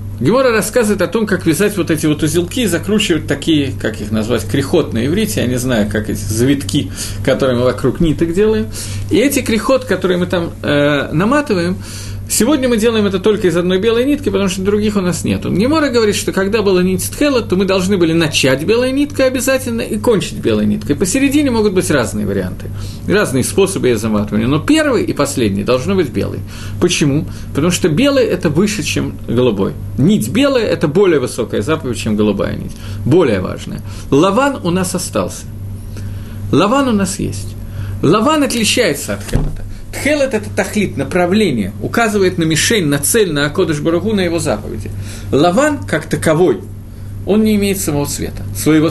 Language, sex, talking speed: Russian, male, 175 wpm